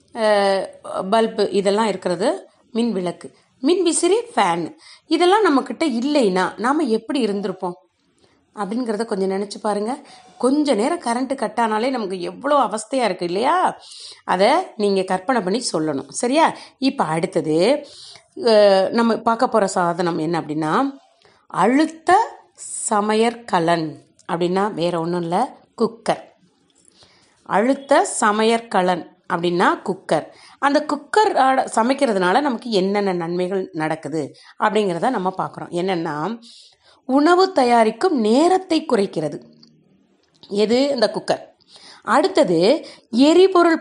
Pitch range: 190-275 Hz